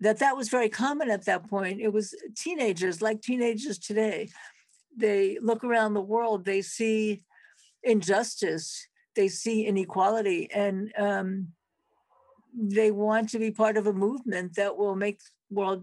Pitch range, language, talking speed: 185-225 Hz, English, 150 wpm